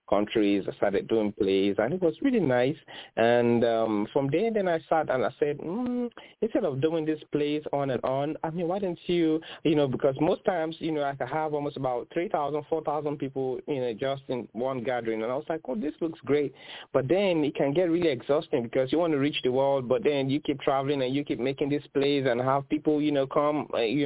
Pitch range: 110-150 Hz